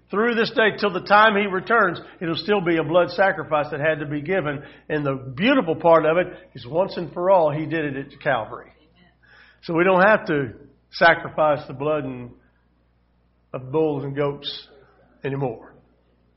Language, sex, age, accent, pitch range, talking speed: English, male, 50-69, American, 115-190 Hz, 180 wpm